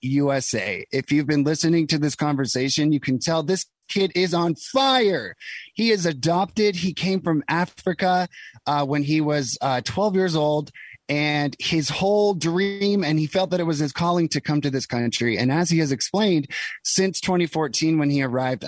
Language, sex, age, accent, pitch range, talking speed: English, male, 30-49, American, 130-160 Hz, 185 wpm